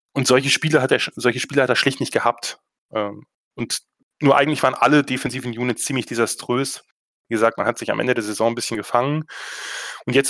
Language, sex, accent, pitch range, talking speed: German, male, German, 115-145 Hz, 200 wpm